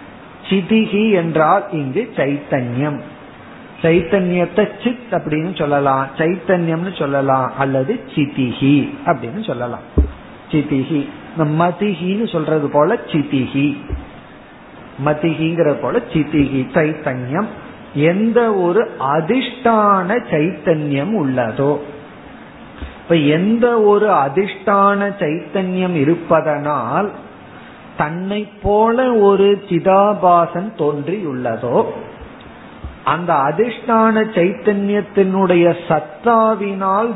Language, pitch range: Tamil, 150-200 Hz